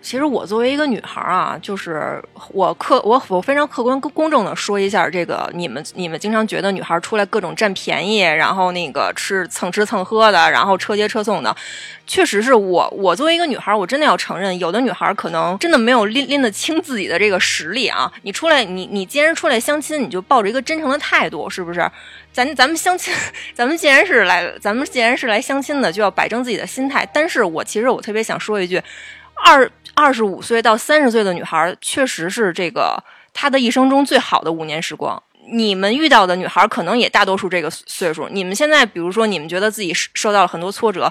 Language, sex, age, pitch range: Chinese, female, 20-39, 185-275 Hz